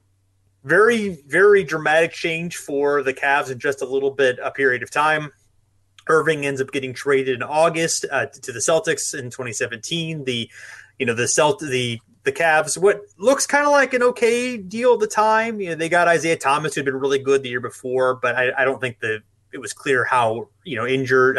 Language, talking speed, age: English, 210 wpm, 30-49